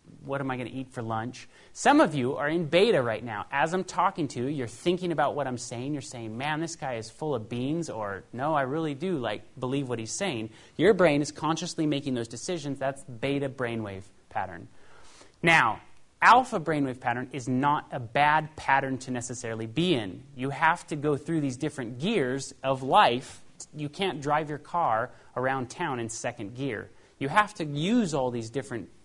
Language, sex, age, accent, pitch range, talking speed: Danish, male, 30-49, American, 125-155 Hz, 200 wpm